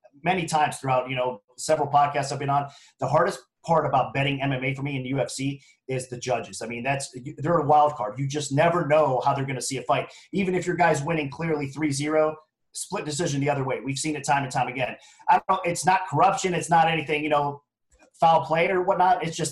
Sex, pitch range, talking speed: male, 135-155 Hz, 235 wpm